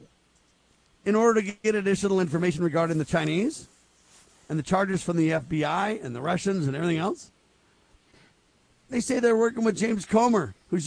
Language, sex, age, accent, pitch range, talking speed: English, male, 50-69, American, 165-210 Hz, 160 wpm